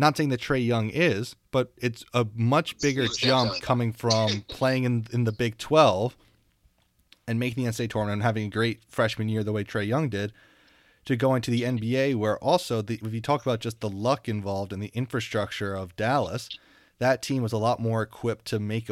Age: 30-49